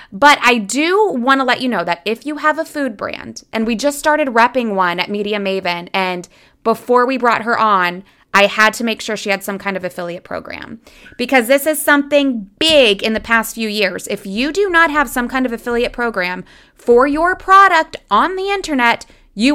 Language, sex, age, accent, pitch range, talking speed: English, female, 20-39, American, 215-290 Hz, 210 wpm